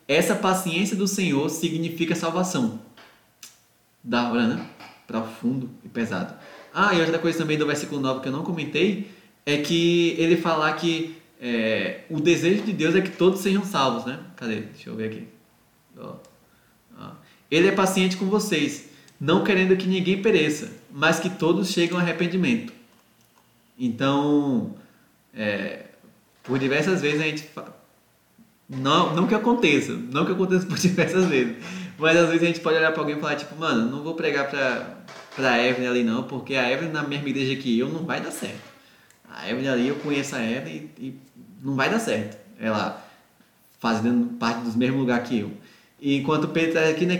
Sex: male